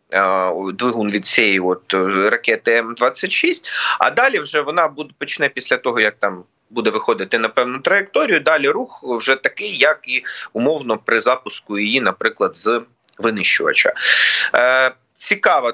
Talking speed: 135 wpm